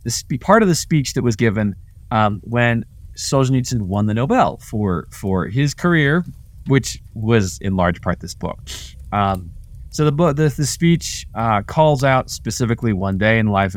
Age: 20-39